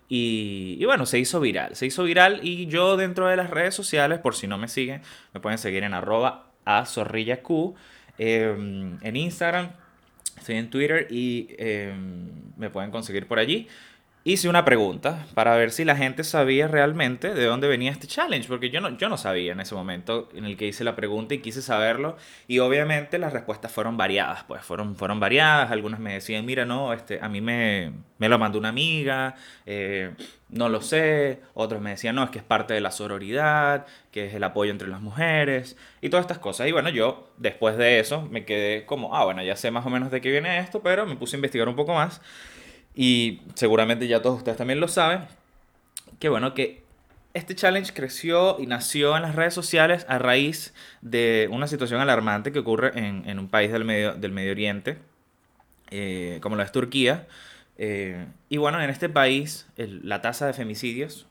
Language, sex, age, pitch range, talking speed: Spanish, male, 20-39, 110-150 Hz, 200 wpm